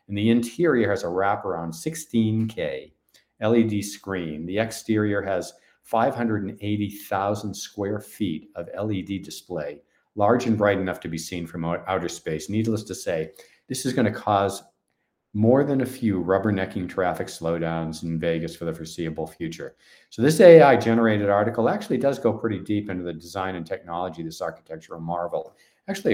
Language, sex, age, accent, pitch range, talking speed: English, male, 50-69, American, 90-115 Hz, 160 wpm